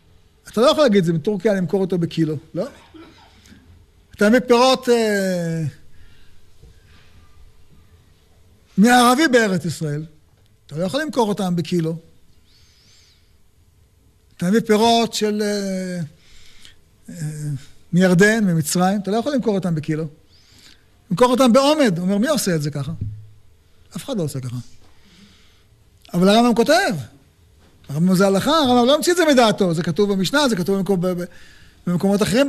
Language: Hebrew